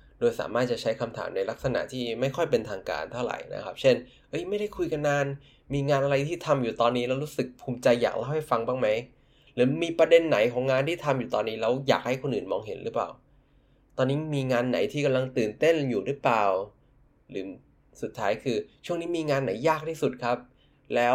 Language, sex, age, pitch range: Thai, male, 20-39, 125-155 Hz